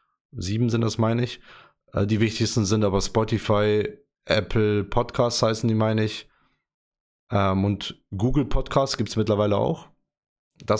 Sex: male